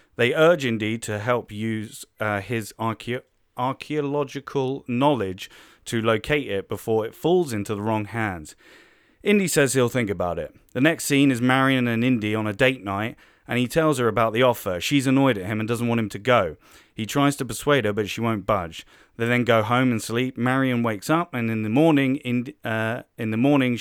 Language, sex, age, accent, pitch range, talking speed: English, male, 30-49, British, 110-130 Hz, 195 wpm